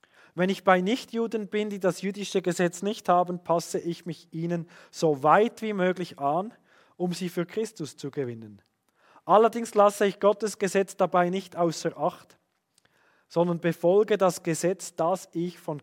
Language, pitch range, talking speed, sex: German, 170-210 Hz, 160 wpm, male